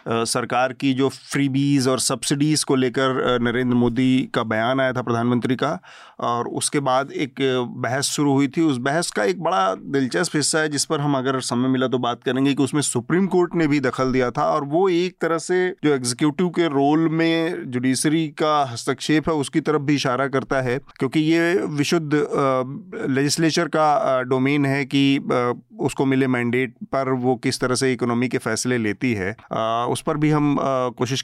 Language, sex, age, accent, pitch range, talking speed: Hindi, male, 30-49, native, 125-145 Hz, 185 wpm